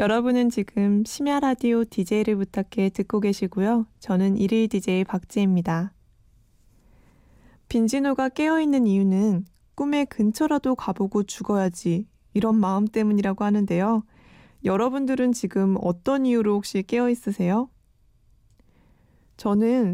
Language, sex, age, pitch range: Korean, female, 20-39, 190-245 Hz